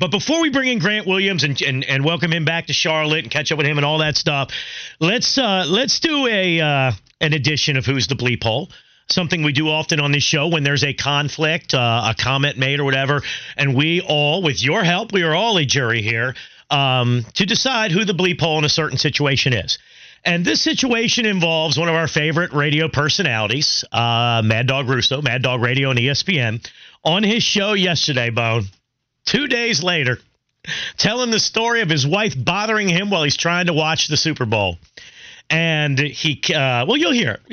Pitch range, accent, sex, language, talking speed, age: 140-200 Hz, American, male, English, 205 wpm, 40-59